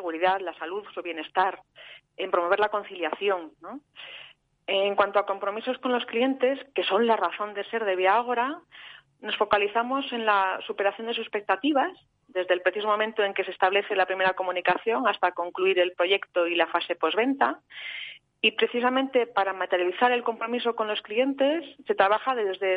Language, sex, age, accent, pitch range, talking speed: Spanish, female, 30-49, Spanish, 180-220 Hz, 170 wpm